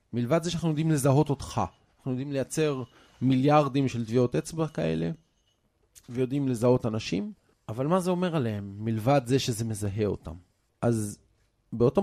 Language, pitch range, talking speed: Hebrew, 110-150 Hz, 145 wpm